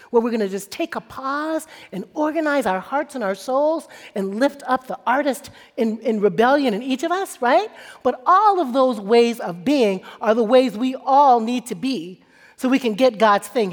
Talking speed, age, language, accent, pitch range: 210 wpm, 40-59, English, American, 210-290 Hz